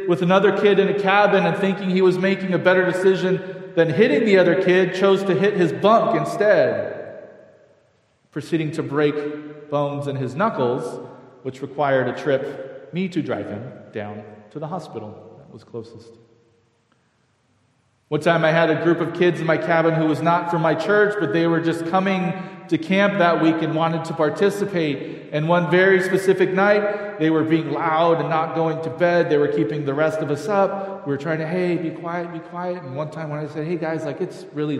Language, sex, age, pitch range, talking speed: English, male, 40-59, 140-185 Hz, 205 wpm